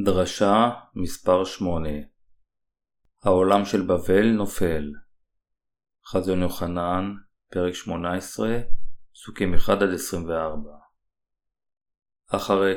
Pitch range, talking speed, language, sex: 95-105 Hz, 75 wpm, Hebrew, male